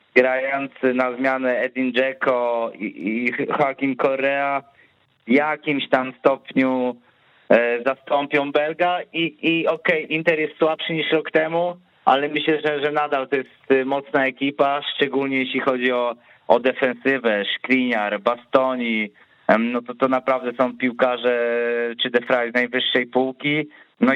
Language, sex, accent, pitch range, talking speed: Polish, male, native, 120-135 Hz, 135 wpm